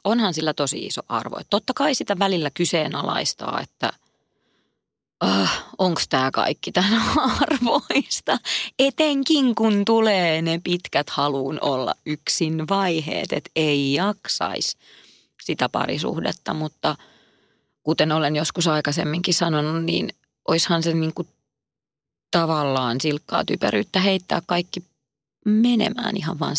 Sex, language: female, Finnish